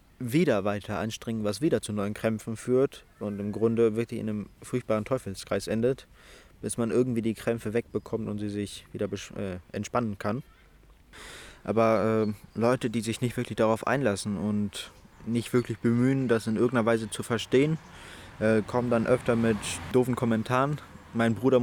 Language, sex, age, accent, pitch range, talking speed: German, male, 20-39, German, 105-120 Hz, 160 wpm